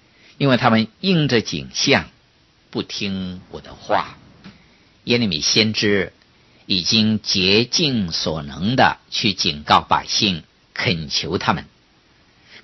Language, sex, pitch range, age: Chinese, male, 90-130 Hz, 50-69